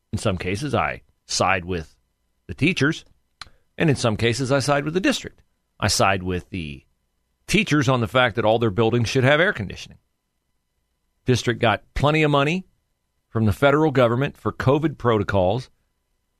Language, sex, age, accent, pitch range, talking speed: English, male, 40-59, American, 95-155 Hz, 165 wpm